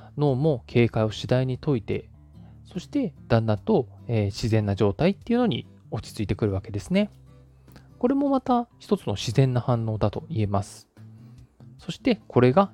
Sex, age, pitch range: male, 20-39, 105-155 Hz